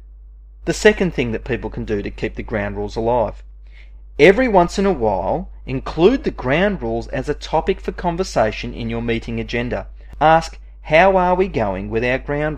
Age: 30-49